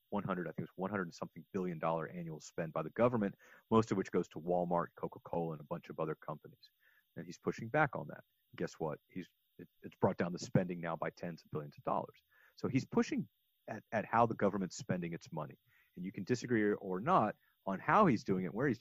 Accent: American